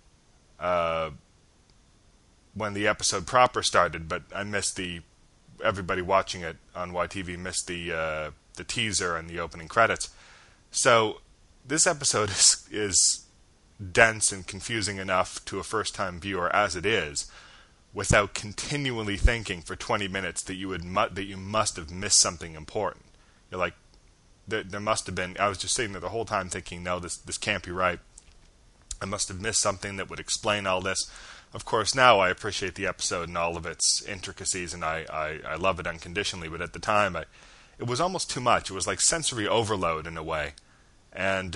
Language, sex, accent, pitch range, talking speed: English, male, American, 85-100 Hz, 190 wpm